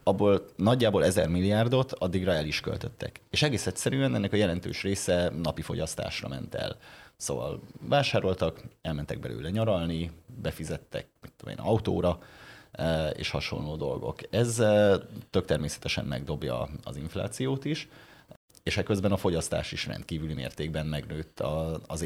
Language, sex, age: Hungarian, male, 30-49